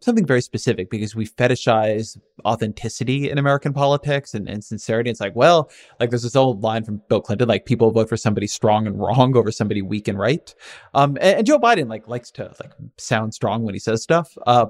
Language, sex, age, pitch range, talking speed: English, male, 20-39, 110-155 Hz, 215 wpm